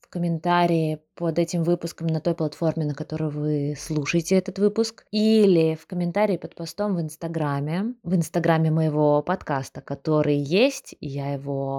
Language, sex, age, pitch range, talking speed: Russian, female, 20-39, 155-195 Hz, 155 wpm